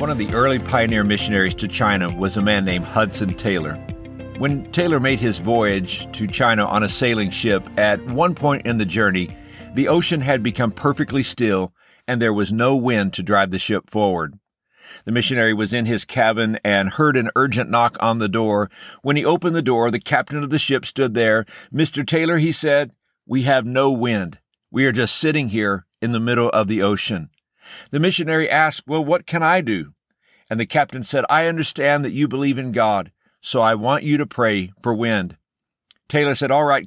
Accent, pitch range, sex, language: American, 110-150 Hz, male, English